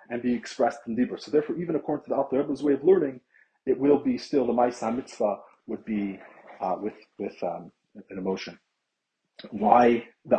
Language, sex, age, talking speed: English, male, 40-59, 190 wpm